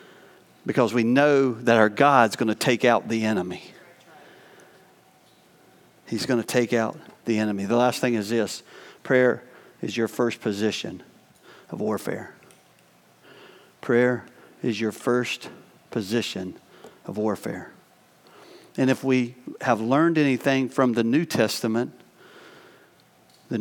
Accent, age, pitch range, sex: American, 50-69, 115-135 Hz, male